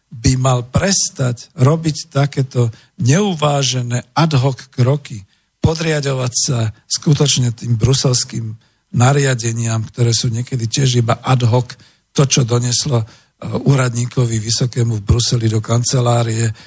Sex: male